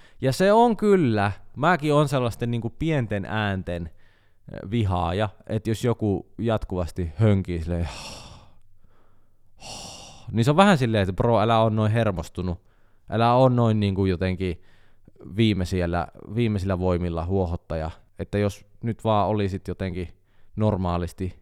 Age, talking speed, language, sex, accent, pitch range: 20-39, 125 wpm, Finnish, male, native, 90-110 Hz